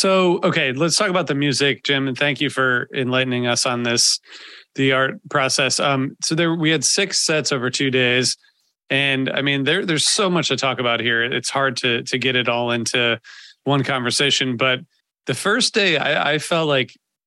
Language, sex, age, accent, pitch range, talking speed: English, male, 30-49, American, 120-140 Hz, 200 wpm